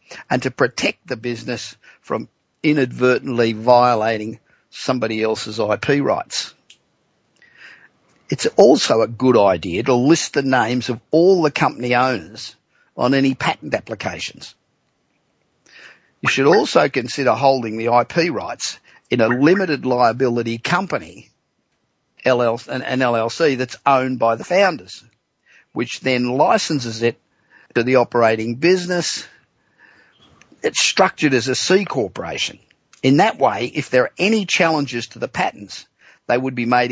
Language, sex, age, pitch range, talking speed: English, male, 50-69, 120-145 Hz, 125 wpm